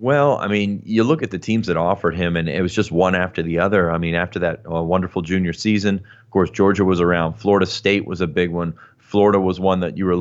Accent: American